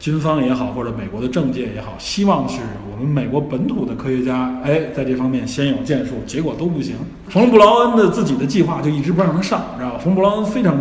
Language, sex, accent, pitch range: Chinese, male, native, 115-175 Hz